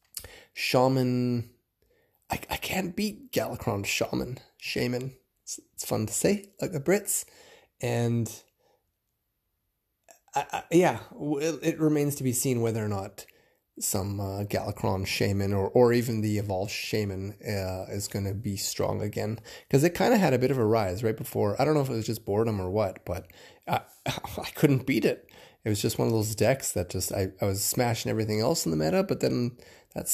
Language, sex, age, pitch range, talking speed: English, male, 20-39, 100-135 Hz, 185 wpm